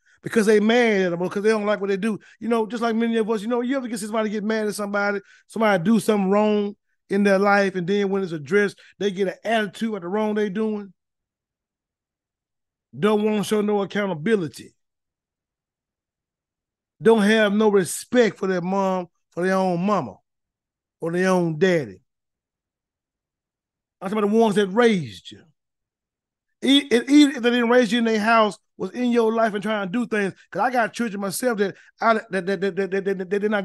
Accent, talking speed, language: American, 205 wpm, English